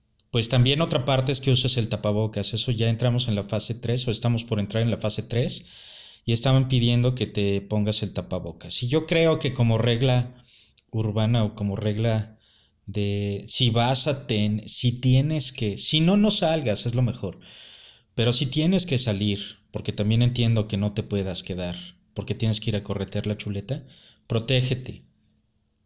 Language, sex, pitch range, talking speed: Spanish, male, 105-125 Hz, 185 wpm